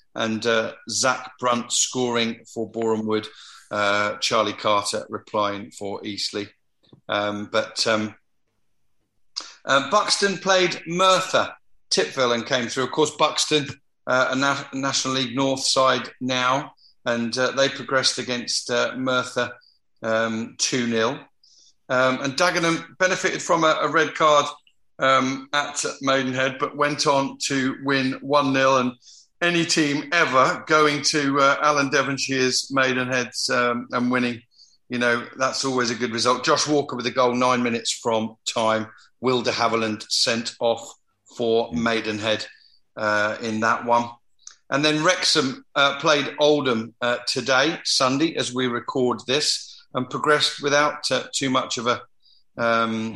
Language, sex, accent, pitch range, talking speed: English, male, British, 115-140 Hz, 140 wpm